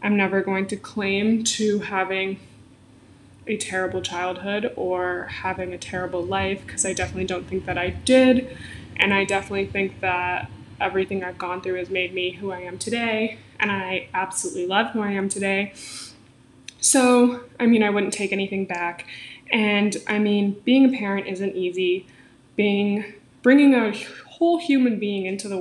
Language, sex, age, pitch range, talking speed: English, female, 20-39, 185-210 Hz, 165 wpm